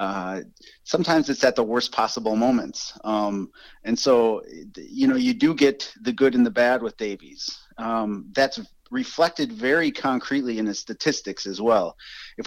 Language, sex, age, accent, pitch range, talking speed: English, male, 40-59, American, 110-140 Hz, 165 wpm